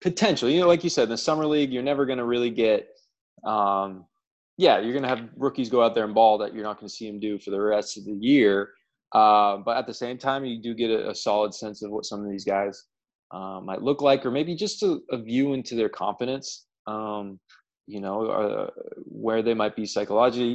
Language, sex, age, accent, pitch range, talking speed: English, male, 20-39, American, 105-135 Hz, 245 wpm